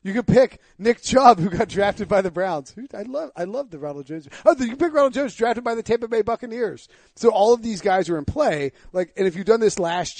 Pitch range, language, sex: 145-190 Hz, English, male